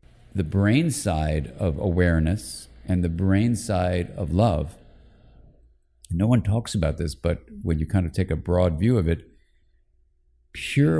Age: 40-59